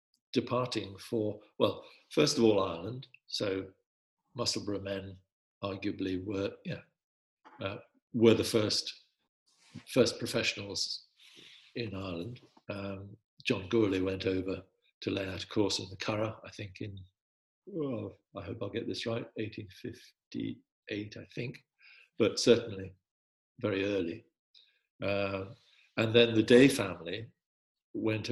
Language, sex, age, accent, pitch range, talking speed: English, male, 50-69, British, 100-115 Hz, 125 wpm